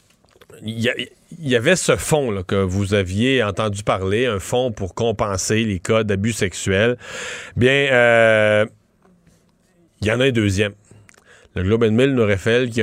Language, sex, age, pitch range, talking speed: French, male, 30-49, 105-130 Hz, 155 wpm